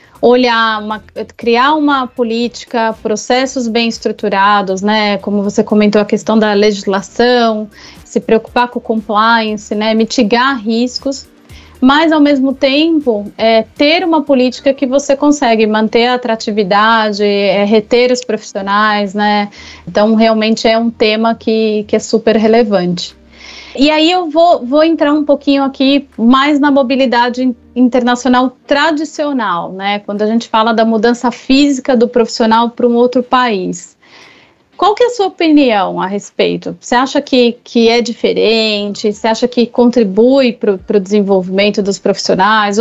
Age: 30-49